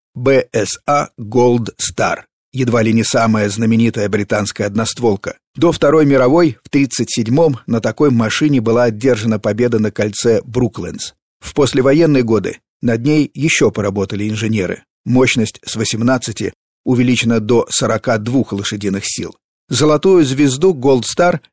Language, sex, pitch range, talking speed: Russian, male, 105-135 Hz, 125 wpm